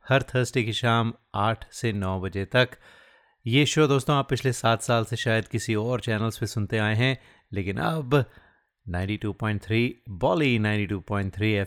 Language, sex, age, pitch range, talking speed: Hindi, male, 30-49, 100-125 Hz, 170 wpm